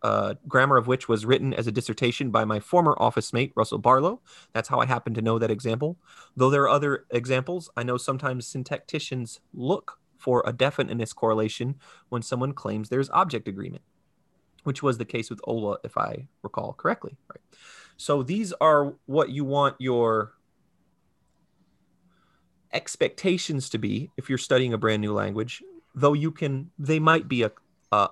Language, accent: English, American